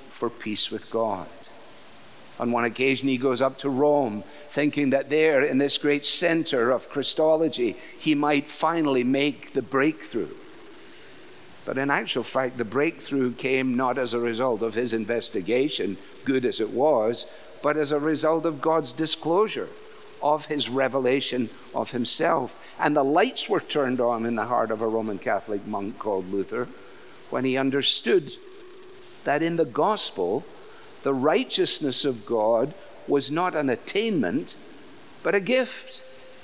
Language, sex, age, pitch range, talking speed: English, male, 50-69, 130-200 Hz, 150 wpm